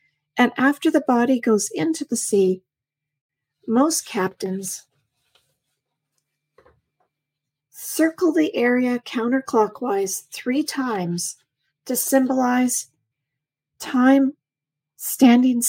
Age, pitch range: 40-59, 185-245 Hz